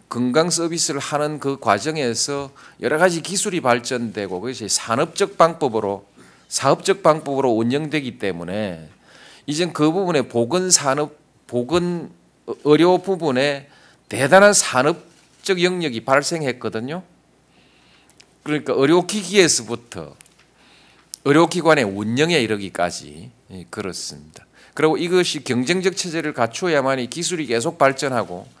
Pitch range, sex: 110-160 Hz, male